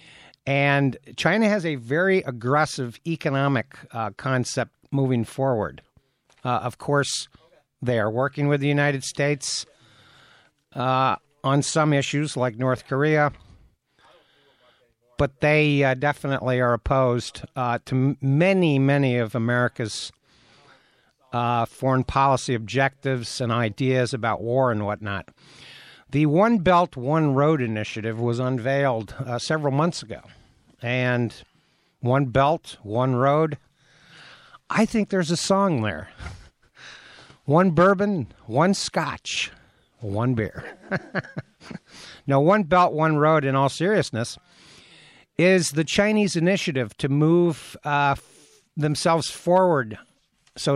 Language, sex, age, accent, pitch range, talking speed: English, male, 60-79, American, 125-150 Hz, 115 wpm